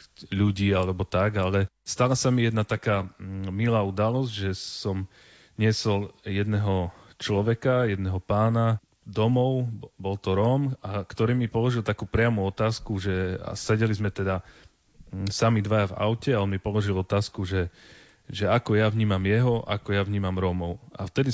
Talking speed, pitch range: 155 wpm, 95-110 Hz